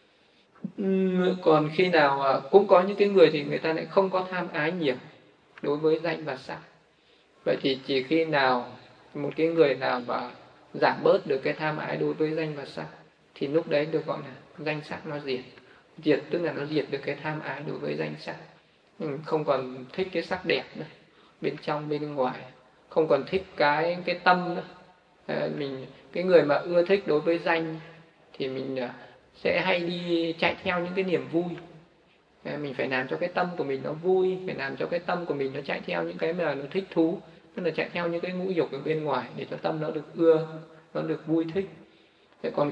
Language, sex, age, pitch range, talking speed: Vietnamese, male, 20-39, 140-175 Hz, 210 wpm